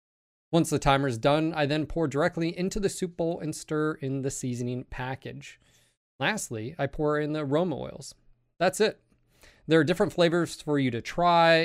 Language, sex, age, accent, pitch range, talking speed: English, male, 30-49, American, 130-175 Hz, 185 wpm